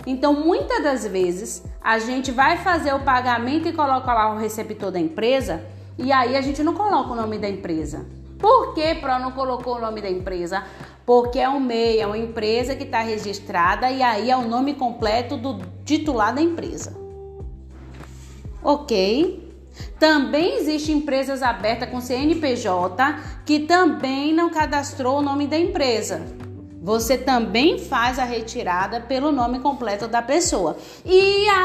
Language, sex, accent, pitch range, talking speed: Portuguese, female, Brazilian, 225-305 Hz, 155 wpm